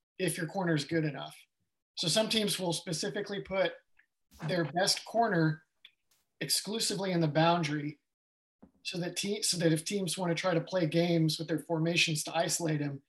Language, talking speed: English, 175 wpm